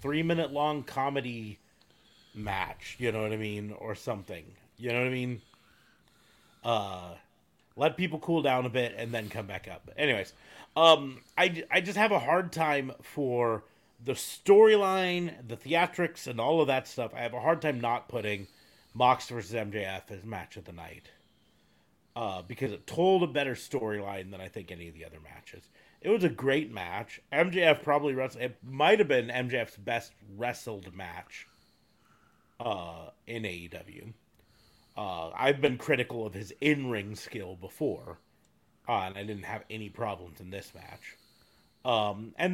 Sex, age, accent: male, 30-49, American